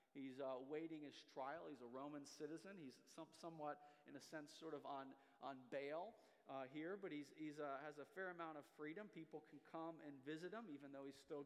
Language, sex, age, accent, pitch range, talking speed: English, male, 40-59, American, 135-190 Hz, 220 wpm